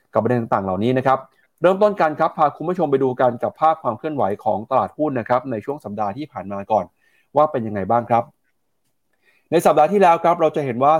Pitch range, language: 115-155 Hz, Thai